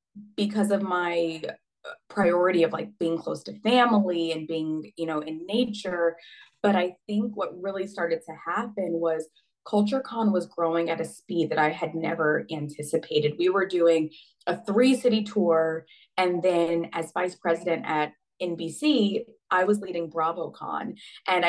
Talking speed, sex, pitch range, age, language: 150 wpm, female, 170-215 Hz, 20-39, English